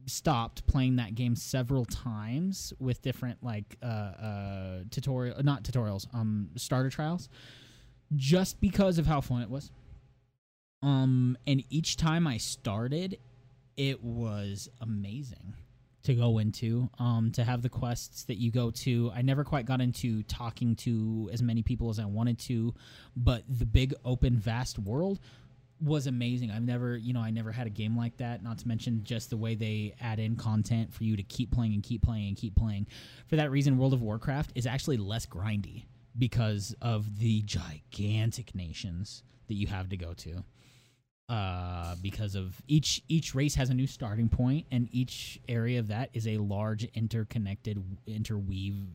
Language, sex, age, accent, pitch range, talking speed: English, male, 20-39, American, 110-130 Hz, 175 wpm